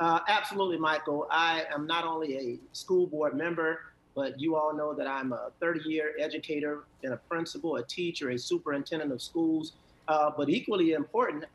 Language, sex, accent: English, male, American